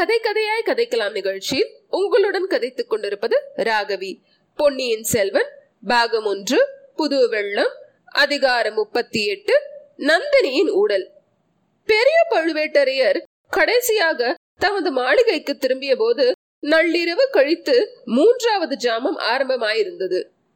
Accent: native